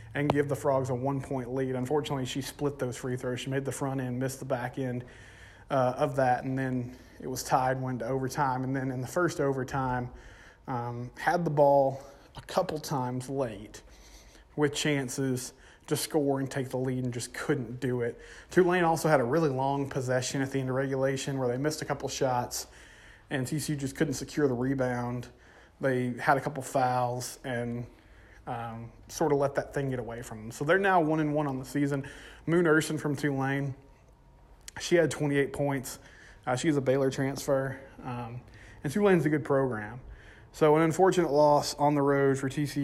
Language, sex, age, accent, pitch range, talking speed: English, male, 30-49, American, 125-145 Hz, 195 wpm